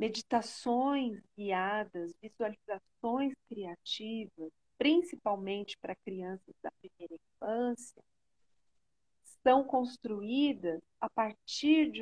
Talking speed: 75 wpm